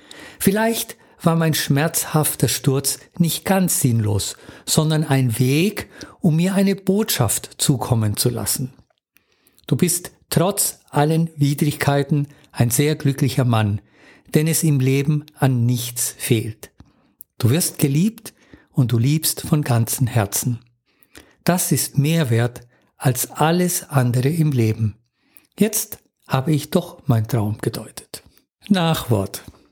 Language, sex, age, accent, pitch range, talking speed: German, male, 50-69, German, 125-160 Hz, 120 wpm